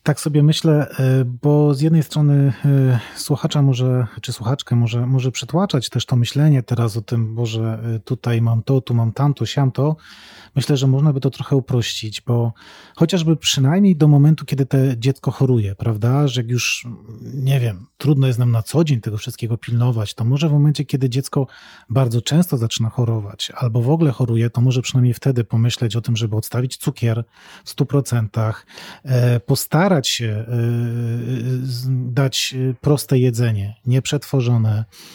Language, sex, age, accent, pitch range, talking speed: Polish, male, 30-49, native, 120-145 Hz, 160 wpm